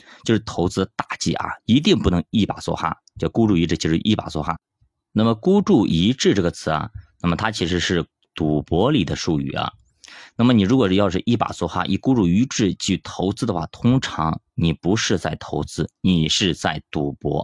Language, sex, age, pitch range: Chinese, male, 20-39, 85-110 Hz